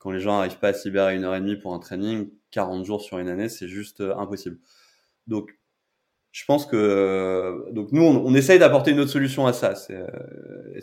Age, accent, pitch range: 20-39, French, 100-130 Hz